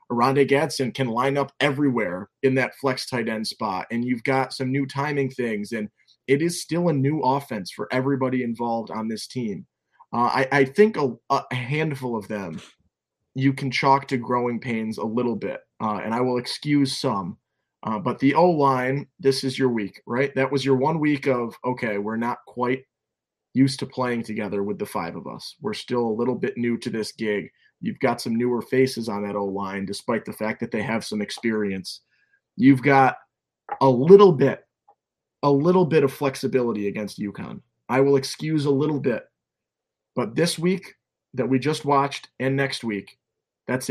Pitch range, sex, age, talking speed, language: 115-140 Hz, male, 20-39, 190 wpm, English